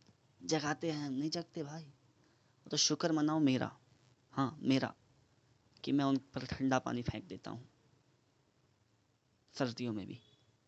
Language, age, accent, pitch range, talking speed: Hindi, 20-39, native, 115-140 Hz, 130 wpm